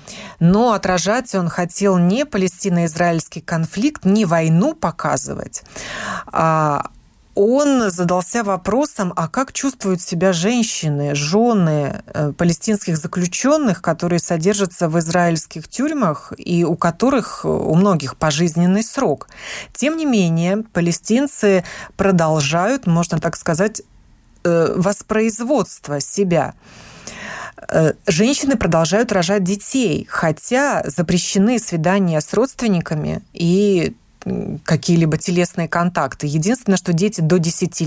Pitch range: 170-215 Hz